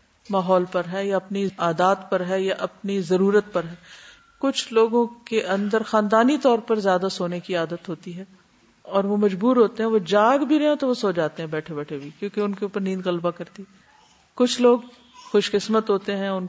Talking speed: 210 wpm